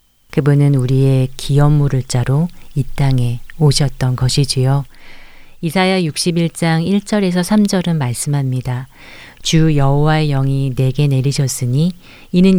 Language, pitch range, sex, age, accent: Korean, 130-160 Hz, female, 40-59, native